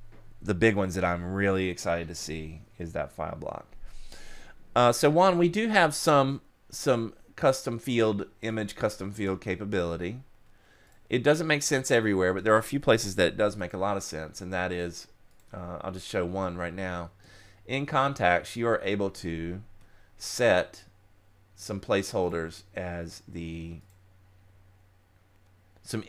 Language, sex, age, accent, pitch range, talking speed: English, male, 30-49, American, 90-110 Hz, 150 wpm